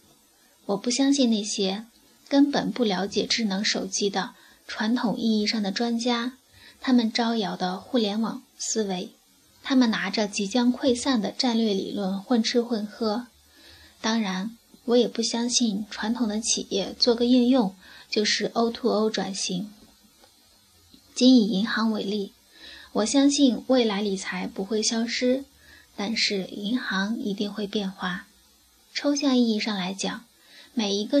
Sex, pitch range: female, 210-250 Hz